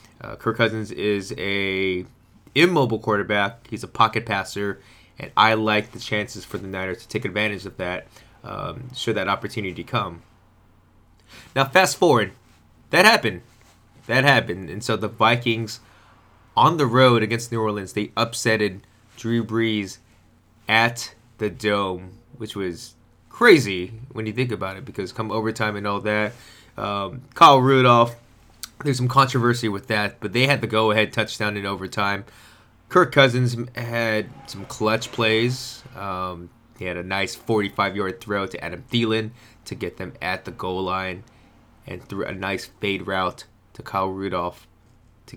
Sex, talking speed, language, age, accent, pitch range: male, 155 wpm, English, 20-39, American, 100-120 Hz